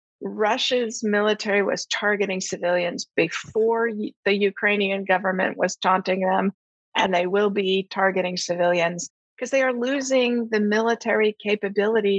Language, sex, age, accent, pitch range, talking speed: English, female, 50-69, American, 185-215 Hz, 125 wpm